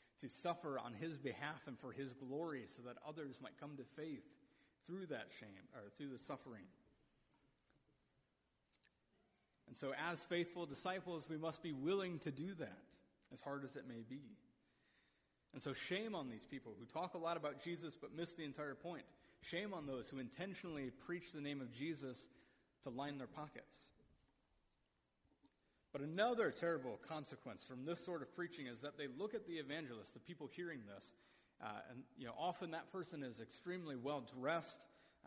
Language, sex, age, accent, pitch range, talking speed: English, male, 30-49, American, 135-185 Hz, 175 wpm